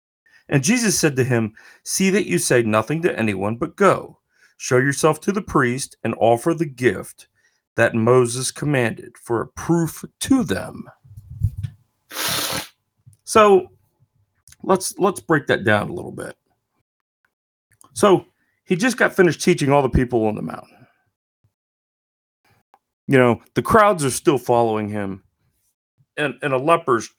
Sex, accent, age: male, American, 40-59